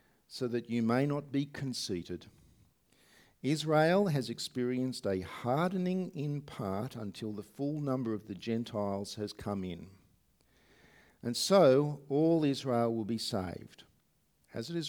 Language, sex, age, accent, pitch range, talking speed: English, male, 50-69, Australian, 100-140 Hz, 135 wpm